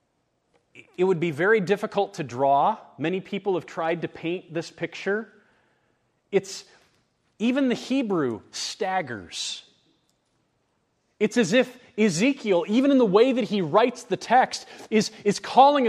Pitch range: 195-255 Hz